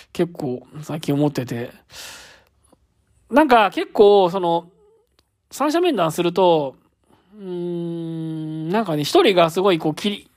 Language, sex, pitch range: Japanese, male, 150-225 Hz